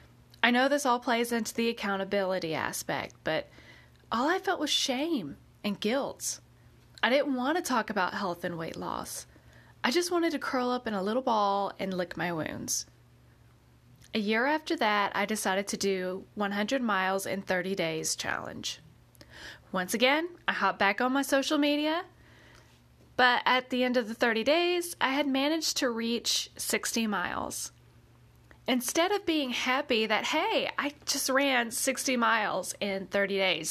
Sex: female